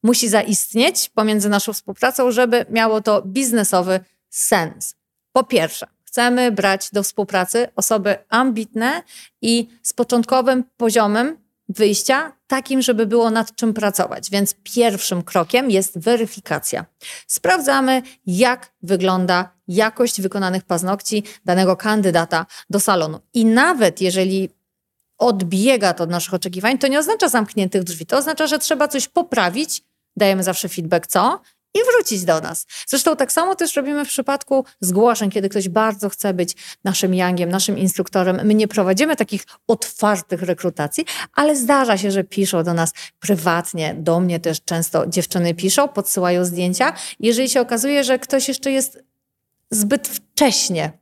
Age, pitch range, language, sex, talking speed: 30-49, 185-255 Hz, Polish, female, 140 wpm